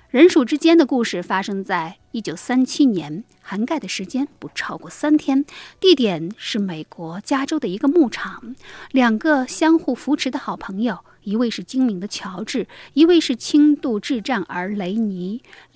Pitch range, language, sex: 205-295 Hz, Chinese, female